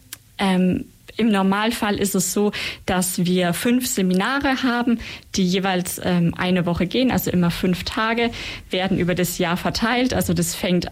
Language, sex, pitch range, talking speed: German, female, 180-210 Hz, 160 wpm